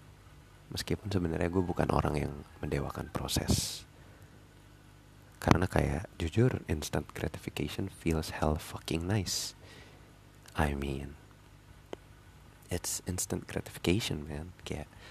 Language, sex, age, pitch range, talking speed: Indonesian, male, 30-49, 80-105 Hz, 95 wpm